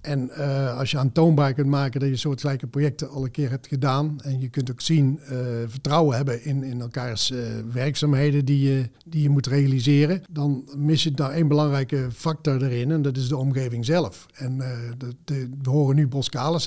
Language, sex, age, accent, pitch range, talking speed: Dutch, male, 50-69, Dutch, 135-160 Hz, 210 wpm